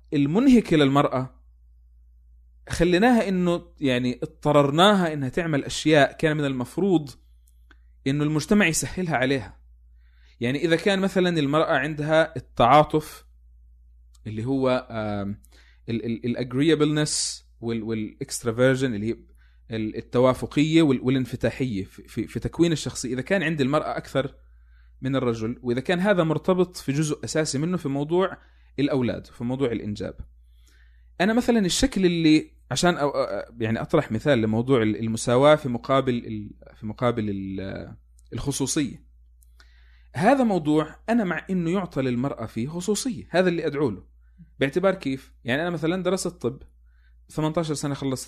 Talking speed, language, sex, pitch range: 115 wpm, Arabic, male, 105-155 Hz